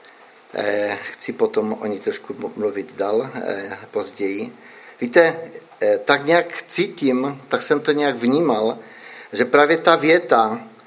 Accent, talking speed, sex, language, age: native, 115 wpm, male, Czech, 50-69